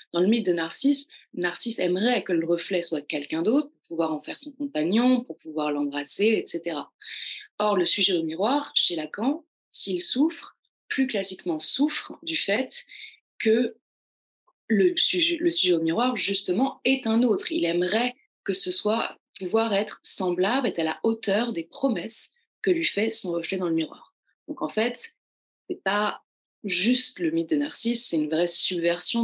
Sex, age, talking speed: female, 30-49, 175 wpm